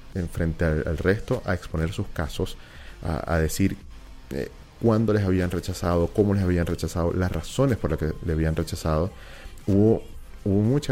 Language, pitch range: Spanish, 80-95 Hz